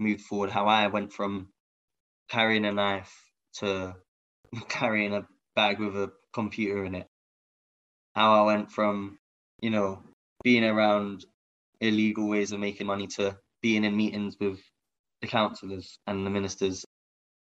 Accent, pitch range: British, 100-110 Hz